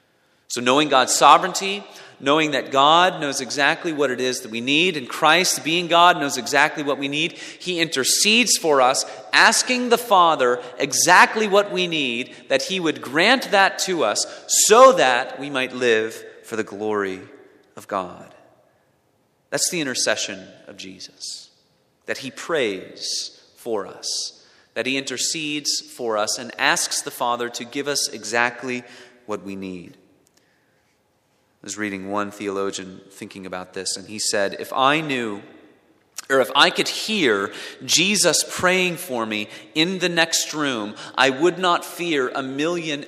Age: 30-49